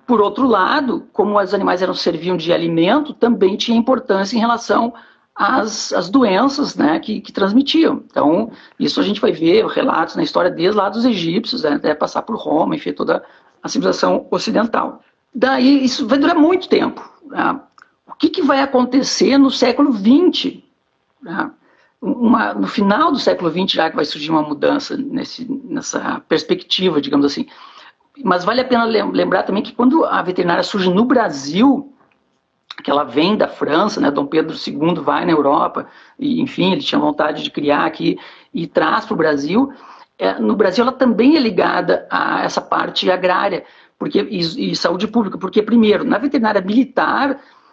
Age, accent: 60-79, Brazilian